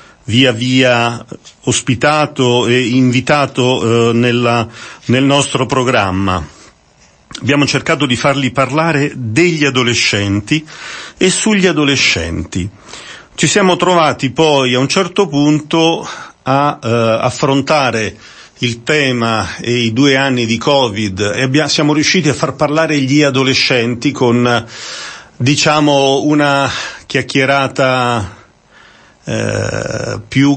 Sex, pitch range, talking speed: male, 115-145 Hz, 100 wpm